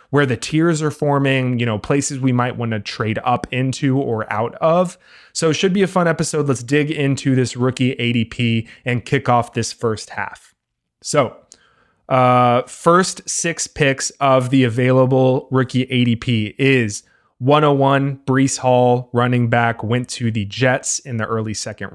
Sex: male